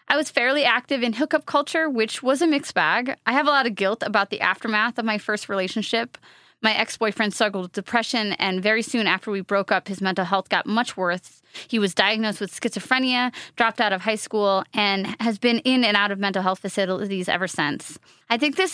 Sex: female